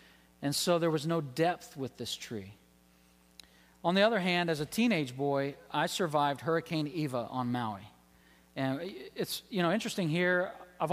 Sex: male